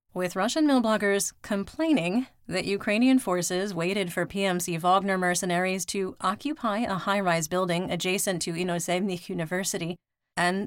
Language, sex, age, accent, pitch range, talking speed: English, female, 30-49, American, 175-205 Hz, 125 wpm